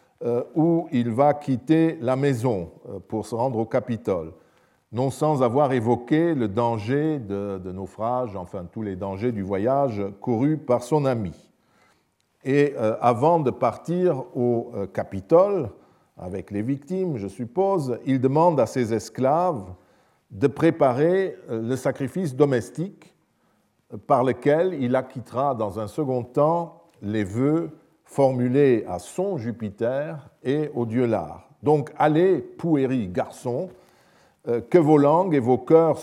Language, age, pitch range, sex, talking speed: French, 50-69, 115-155 Hz, male, 135 wpm